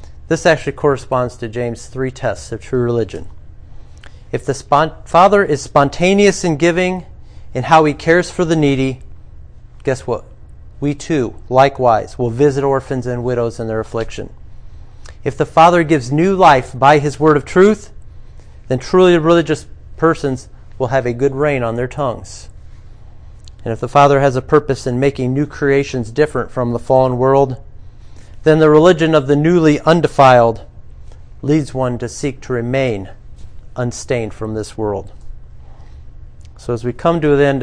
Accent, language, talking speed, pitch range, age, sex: American, English, 160 wpm, 120-150 Hz, 40-59, male